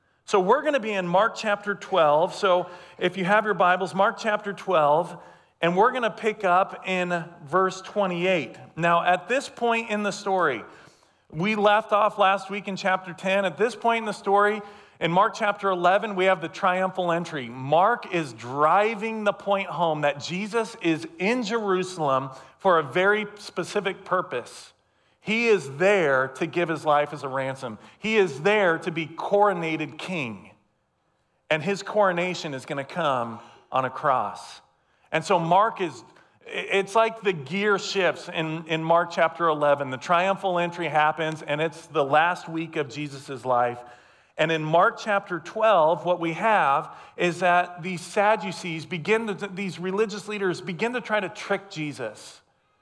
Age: 40-59